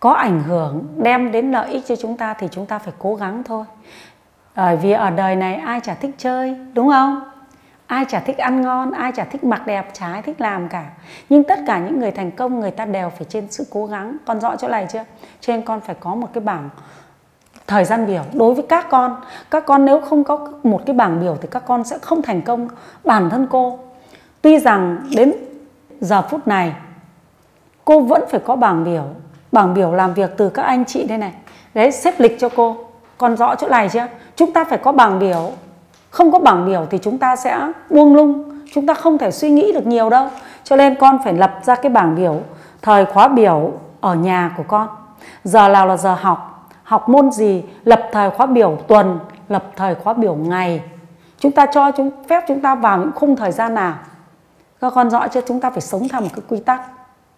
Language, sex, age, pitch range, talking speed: Vietnamese, female, 30-49, 190-265 Hz, 225 wpm